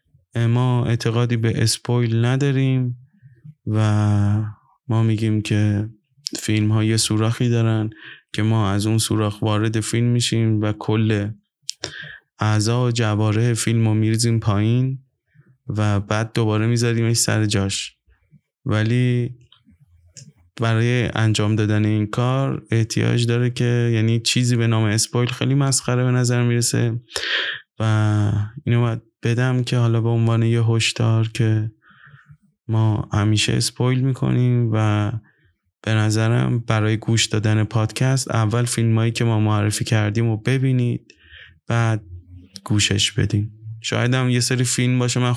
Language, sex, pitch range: Persian, male, 110-125 Hz